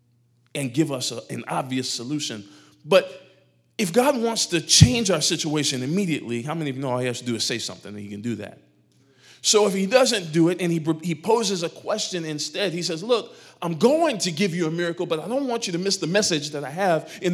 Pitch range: 130-185 Hz